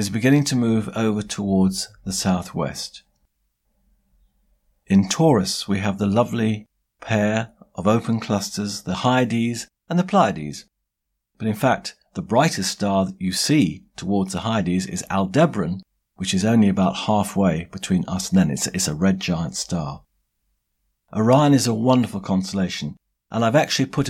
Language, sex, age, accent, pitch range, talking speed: English, male, 50-69, British, 95-130 Hz, 155 wpm